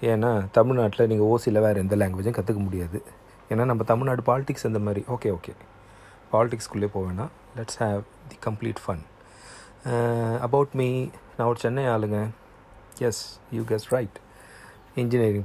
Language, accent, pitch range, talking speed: Tamil, native, 105-125 Hz, 130 wpm